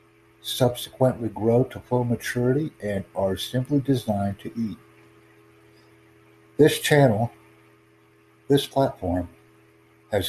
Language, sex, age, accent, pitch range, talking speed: English, male, 60-79, American, 100-130 Hz, 95 wpm